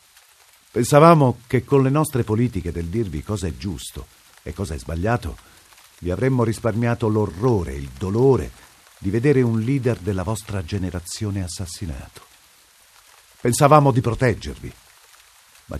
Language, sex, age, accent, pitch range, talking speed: Italian, male, 50-69, native, 80-120 Hz, 125 wpm